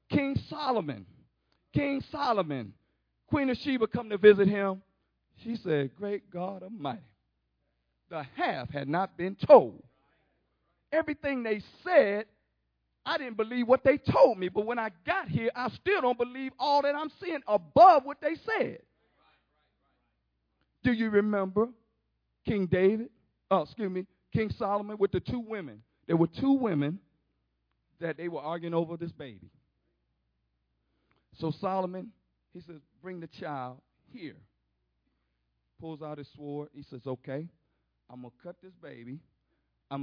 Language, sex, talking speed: English, male, 145 wpm